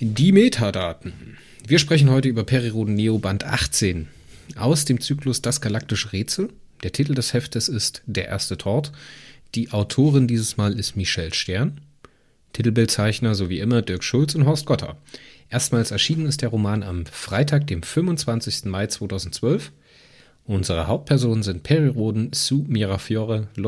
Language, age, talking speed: German, 30-49, 145 wpm